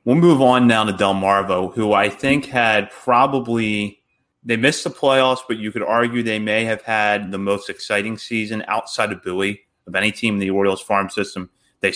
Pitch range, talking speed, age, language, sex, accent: 100-120 Hz, 200 wpm, 30-49, English, male, American